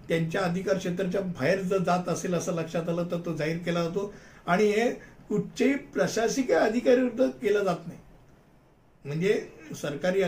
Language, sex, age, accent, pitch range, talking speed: Hindi, male, 60-79, native, 170-215 Hz, 105 wpm